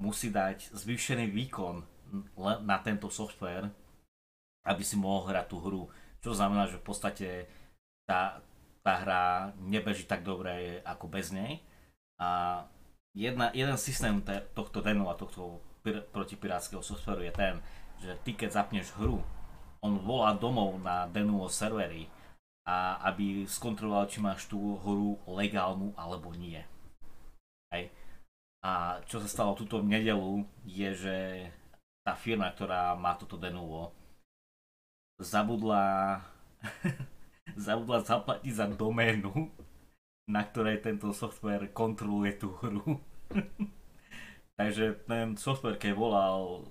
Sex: male